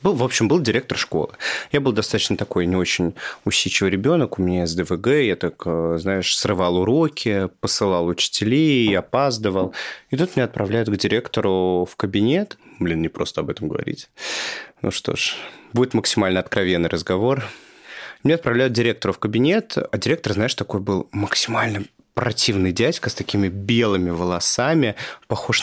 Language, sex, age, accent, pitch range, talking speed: Russian, male, 30-49, native, 100-130 Hz, 150 wpm